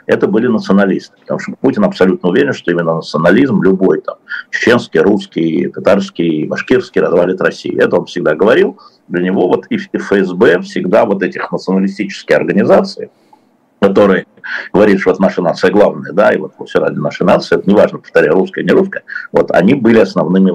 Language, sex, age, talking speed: Russian, male, 60-79, 170 wpm